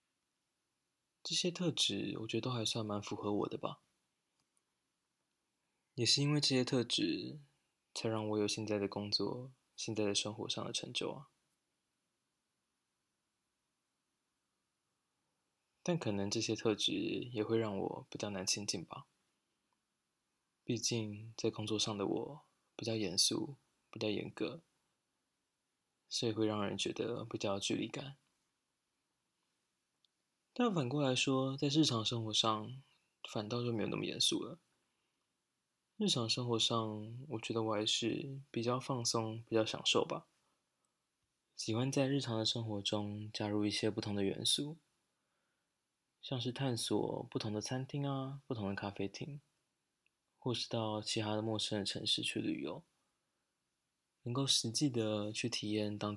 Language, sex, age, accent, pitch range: Chinese, male, 20-39, native, 105-130 Hz